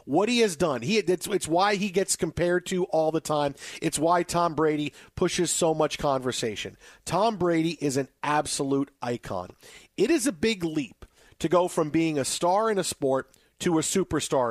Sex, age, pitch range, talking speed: male, 50-69, 155-190 Hz, 190 wpm